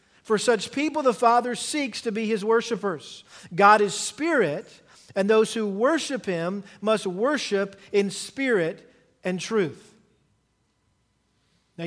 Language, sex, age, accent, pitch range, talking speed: English, male, 40-59, American, 170-220 Hz, 125 wpm